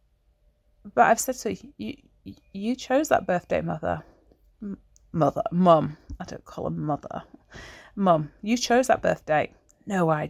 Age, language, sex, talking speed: 30-49, English, female, 140 wpm